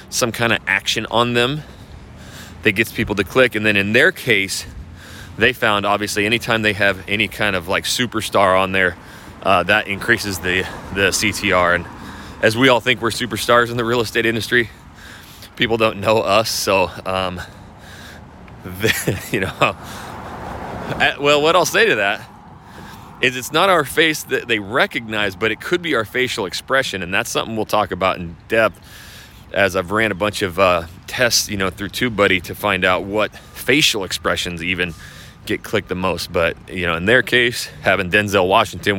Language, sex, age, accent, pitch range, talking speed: English, male, 30-49, American, 95-120 Hz, 180 wpm